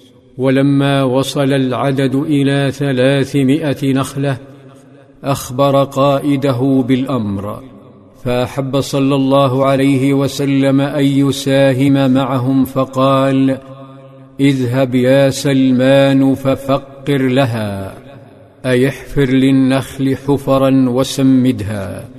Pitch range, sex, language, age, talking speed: 130-135 Hz, male, Arabic, 50-69, 75 wpm